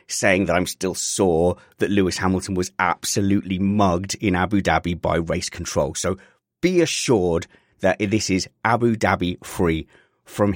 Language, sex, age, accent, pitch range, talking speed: English, male, 30-49, British, 90-120 Hz, 155 wpm